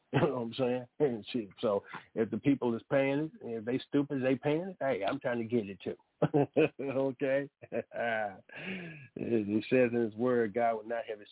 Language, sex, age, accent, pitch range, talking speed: English, male, 50-69, American, 120-155 Hz, 195 wpm